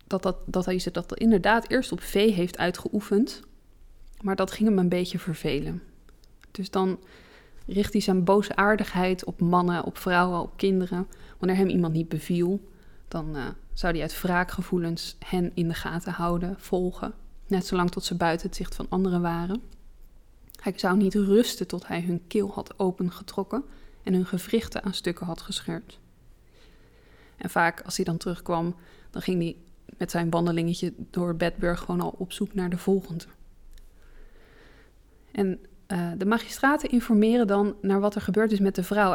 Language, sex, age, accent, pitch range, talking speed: Dutch, female, 20-39, Dutch, 180-205 Hz, 170 wpm